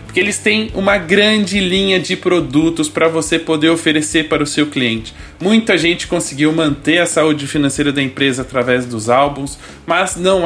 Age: 20-39